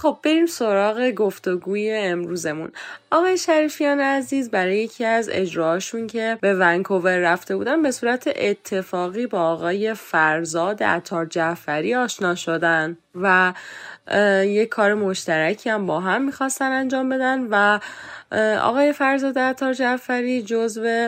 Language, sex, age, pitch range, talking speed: English, female, 10-29, 170-225 Hz, 120 wpm